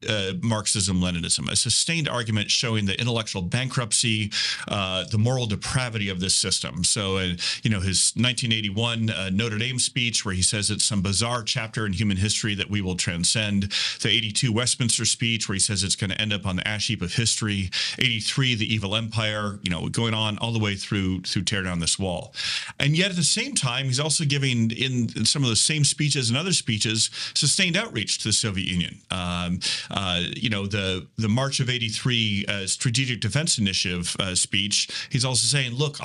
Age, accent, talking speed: 40-59, American, 195 wpm